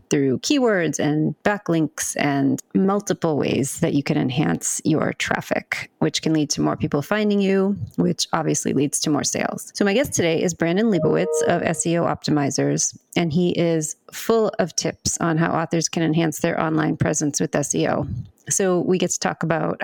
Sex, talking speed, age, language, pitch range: female, 180 wpm, 30-49, English, 160-185 Hz